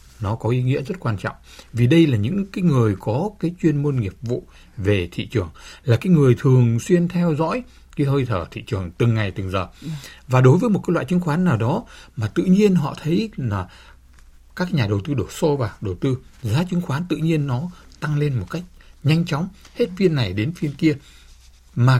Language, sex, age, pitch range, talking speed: Vietnamese, male, 60-79, 100-155 Hz, 225 wpm